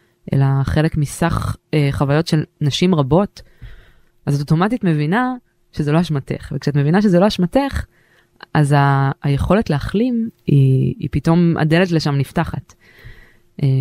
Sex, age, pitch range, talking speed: female, 20-39, 140-175 Hz, 135 wpm